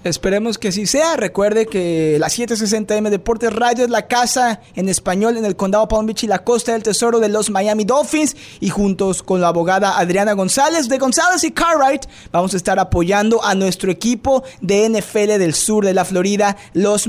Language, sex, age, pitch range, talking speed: Spanish, male, 20-39, 190-250 Hz, 195 wpm